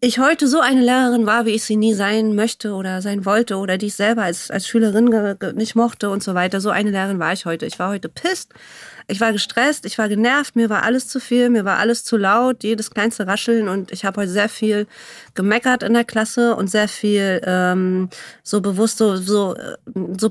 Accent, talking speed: German, 220 wpm